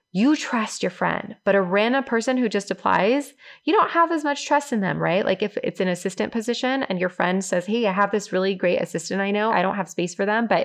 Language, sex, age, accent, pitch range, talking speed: English, female, 20-39, American, 175-215 Hz, 260 wpm